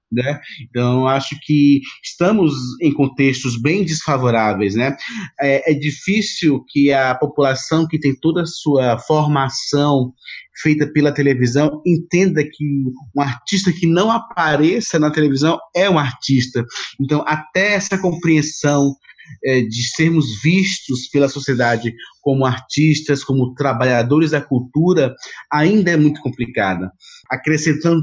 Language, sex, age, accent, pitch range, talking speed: Portuguese, male, 30-49, Brazilian, 130-155 Hz, 125 wpm